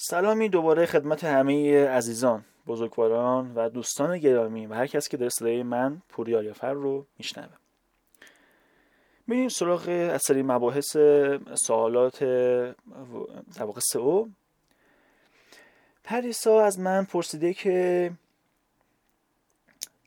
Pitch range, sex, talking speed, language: 125-165 Hz, male, 85 wpm, Persian